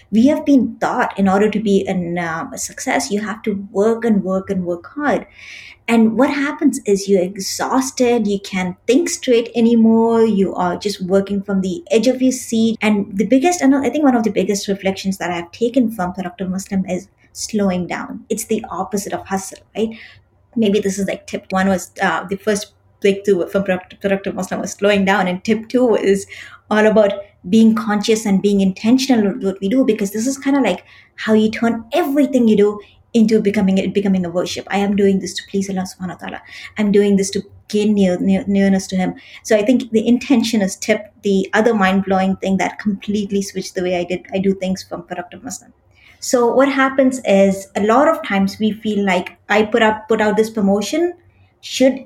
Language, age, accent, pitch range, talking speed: English, 20-39, Indian, 195-235 Hz, 205 wpm